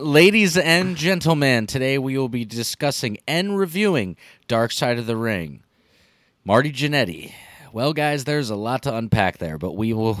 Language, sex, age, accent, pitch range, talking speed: English, male, 30-49, American, 105-140 Hz, 165 wpm